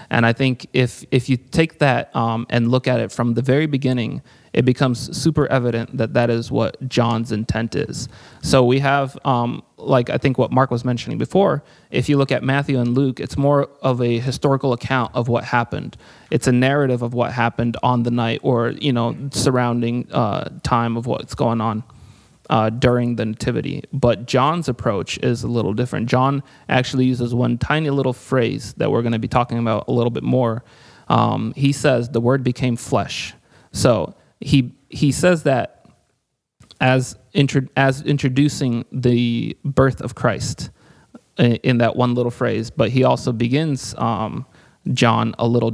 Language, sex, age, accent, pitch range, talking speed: English, male, 30-49, American, 115-135 Hz, 180 wpm